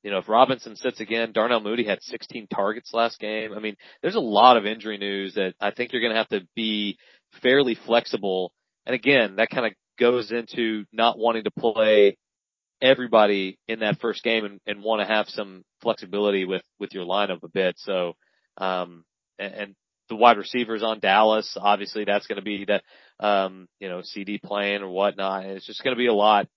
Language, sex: English, male